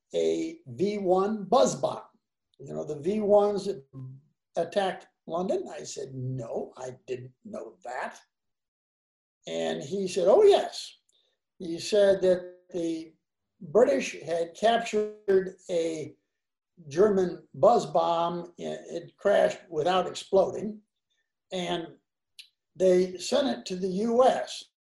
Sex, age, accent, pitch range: male, 60-79, American, 175-215 Hz